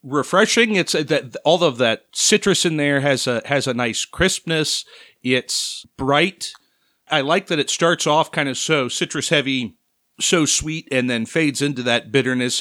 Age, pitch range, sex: 40-59, 120-150 Hz, male